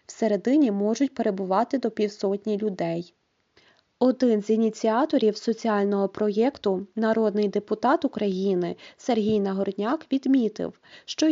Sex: female